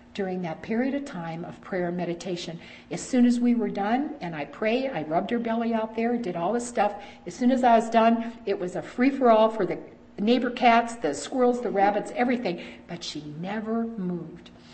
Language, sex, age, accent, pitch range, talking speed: English, female, 50-69, American, 175-230 Hz, 210 wpm